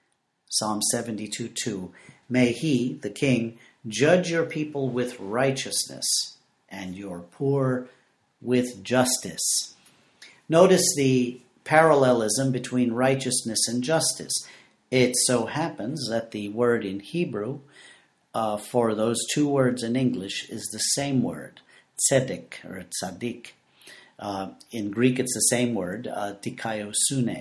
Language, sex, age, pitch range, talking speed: English, male, 50-69, 105-135 Hz, 120 wpm